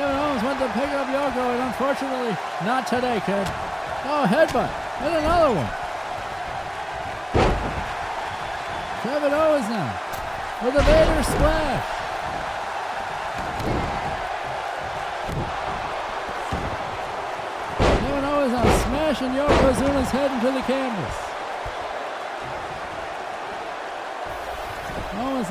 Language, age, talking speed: English, 60-79, 80 wpm